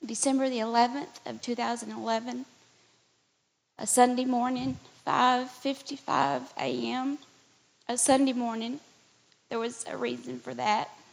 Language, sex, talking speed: English, female, 100 wpm